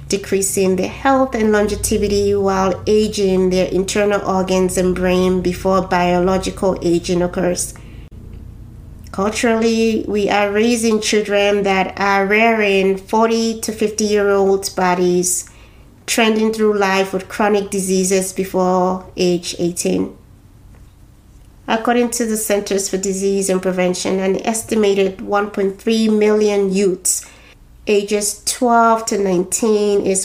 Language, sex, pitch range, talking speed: English, female, 185-215 Hz, 105 wpm